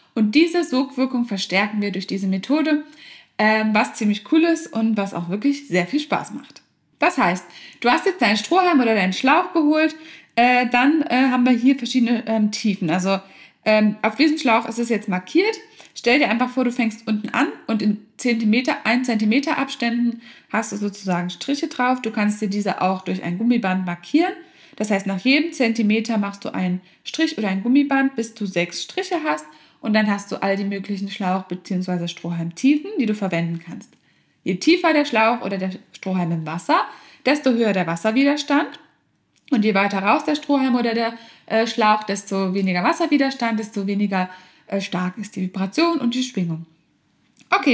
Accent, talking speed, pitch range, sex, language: German, 175 wpm, 200-275 Hz, female, German